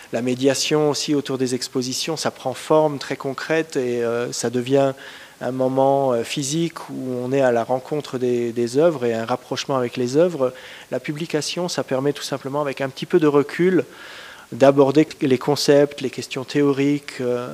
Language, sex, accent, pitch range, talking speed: Portuguese, male, French, 125-145 Hz, 170 wpm